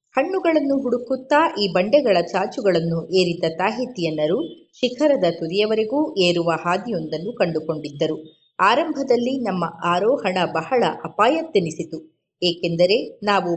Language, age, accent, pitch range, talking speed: Kannada, 30-49, native, 170-250 Hz, 85 wpm